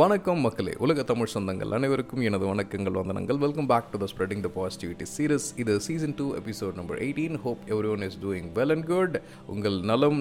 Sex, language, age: male, Tamil, 30-49